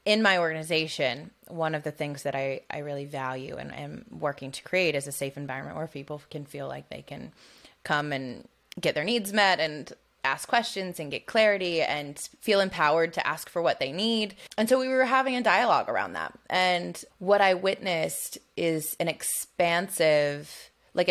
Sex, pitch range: female, 150-185 Hz